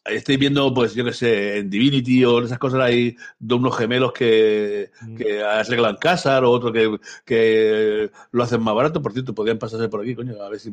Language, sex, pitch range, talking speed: Spanish, male, 120-160 Hz, 215 wpm